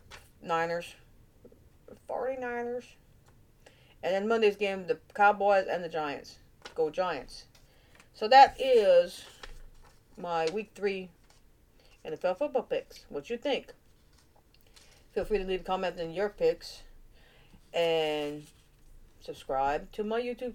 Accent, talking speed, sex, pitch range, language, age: American, 115 wpm, female, 165-260 Hz, English, 40-59